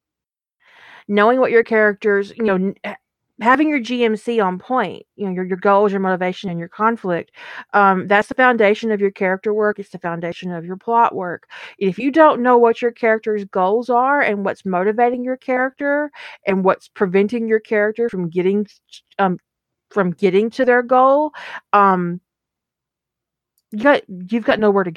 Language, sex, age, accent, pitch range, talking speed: English, female, 40-59, American, 185-230 Hz, 170 wpm